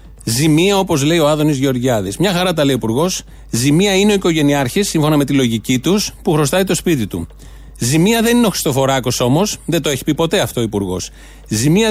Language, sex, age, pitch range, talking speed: Greek, male, 30-49, 130-180 Hz, 195 wpm